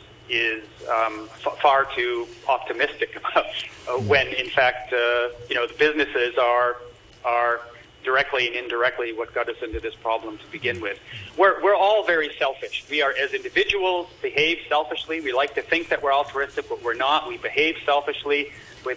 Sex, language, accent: male, English, American